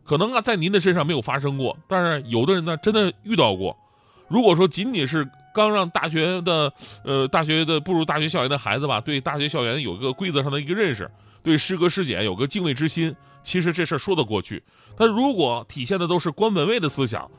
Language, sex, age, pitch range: Chinese, male, 30-49, 135-205 Hz